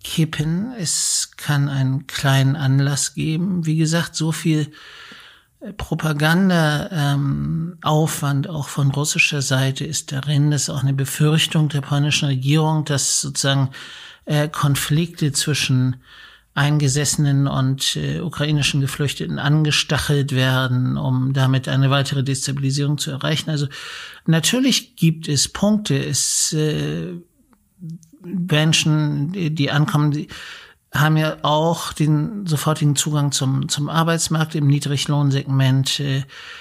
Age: 60-79